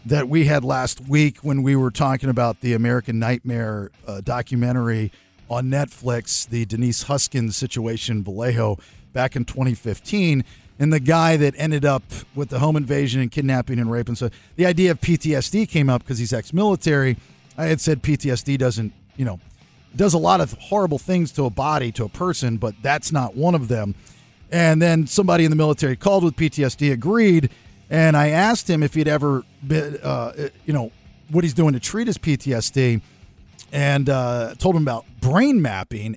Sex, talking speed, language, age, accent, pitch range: male, 185 wpm, English, 40-59, American, 120-160 Hz